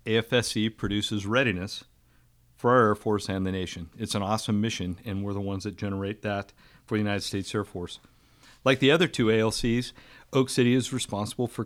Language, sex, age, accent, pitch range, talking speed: English, male, 50-69, American, 100-120 Hz, 190 wpm